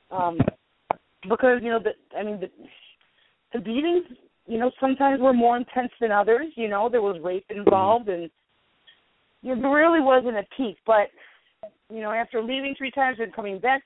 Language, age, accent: English, 30-49, American